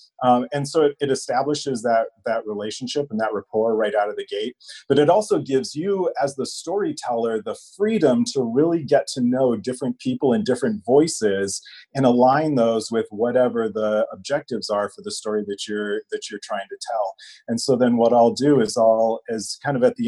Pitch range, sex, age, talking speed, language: 110-150 Hz, male, 30-49, 205 wpm, English